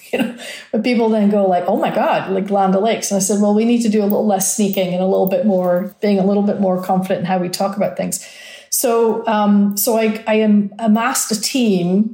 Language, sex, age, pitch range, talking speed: English, female, 40-59, 195-230 Hz, 250 wpm